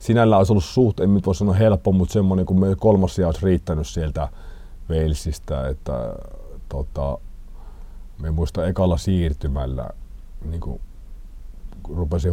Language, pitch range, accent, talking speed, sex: Finnish, 80-95 Hz, native, 125 wpm, male